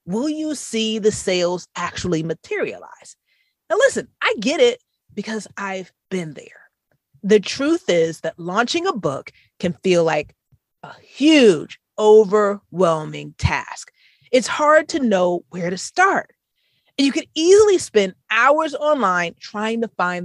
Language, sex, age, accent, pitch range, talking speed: English, female, 30-49, American, 180-290 Hz, 140 wpm